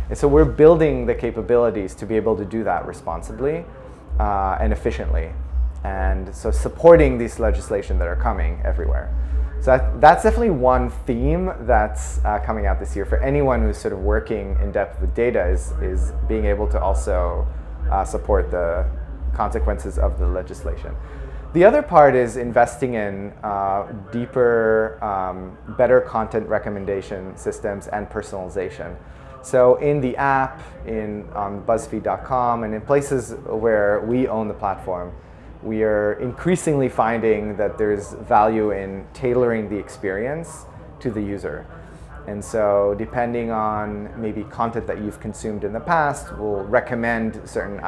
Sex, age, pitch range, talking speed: male, 20-39, 90-120 Hz, 150 wpm